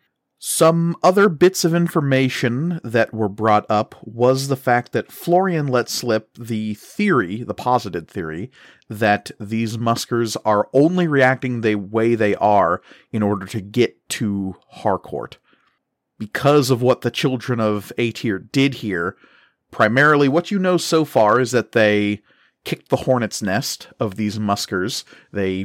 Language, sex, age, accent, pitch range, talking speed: English, male, 40-59, American, 105-130 Hz, 145 wpm